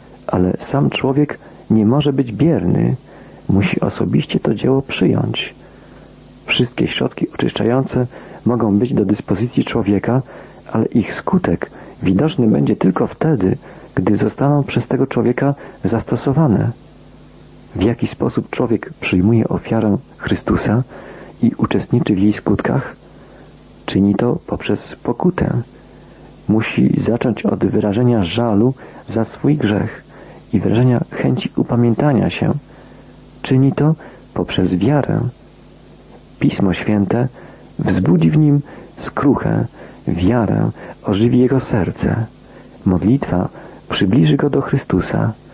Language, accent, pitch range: Polish, native, 105-135 Hz